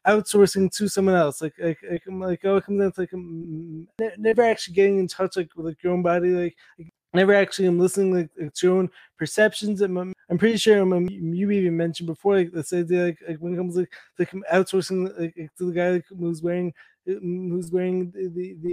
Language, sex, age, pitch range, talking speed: English, male, 20-39, 170-195 Hz, 230 wpm